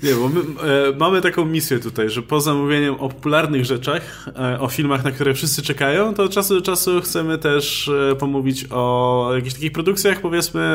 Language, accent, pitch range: Polish, native, 120-165 Hz